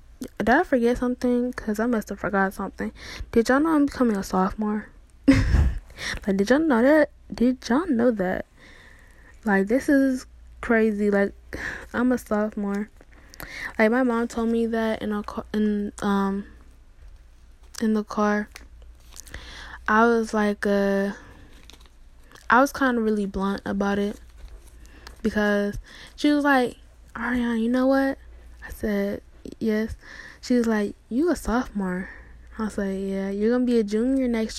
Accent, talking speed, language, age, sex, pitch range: American, 145 wpm, English, 10-29, female, 200-245 Hz